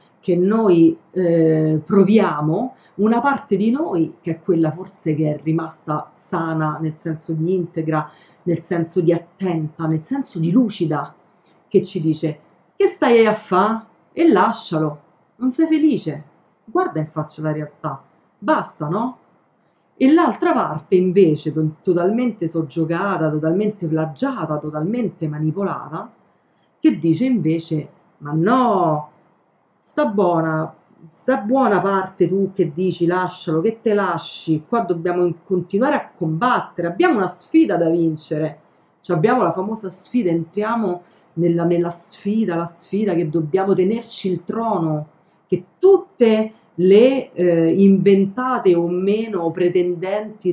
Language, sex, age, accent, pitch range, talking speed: Italian, female, 40-59, native, 160-200 Hz, 125 wpm